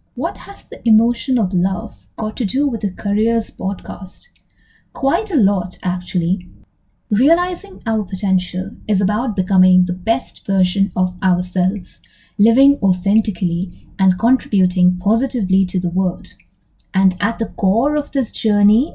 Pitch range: 185-230 Hz